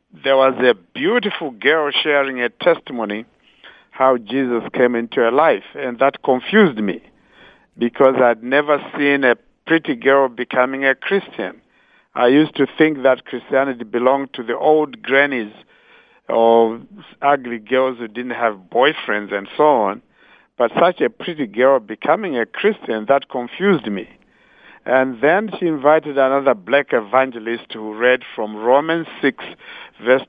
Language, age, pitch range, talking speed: English, 50-69, 120-140 Hz, 145 wpm